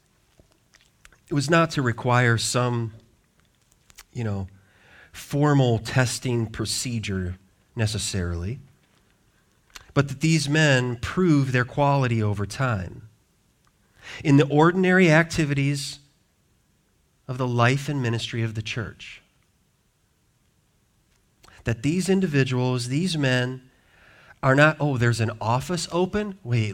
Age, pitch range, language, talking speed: 40-59, 110-145 Hz, English, 105 wpm